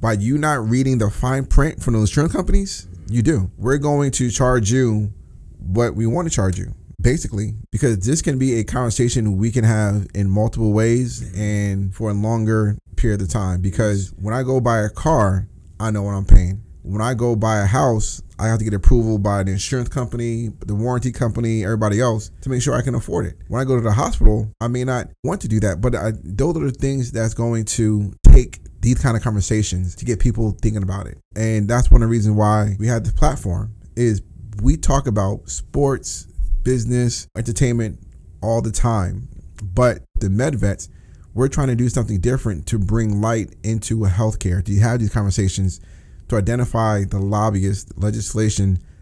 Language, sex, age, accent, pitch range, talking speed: English, male, 20-39, American, 100-125 Hz, 200 wpm